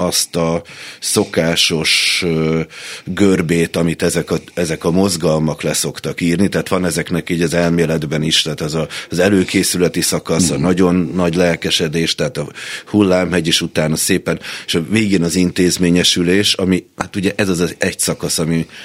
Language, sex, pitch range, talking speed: Hungarian, male, 80-90 Hz, 155 wpm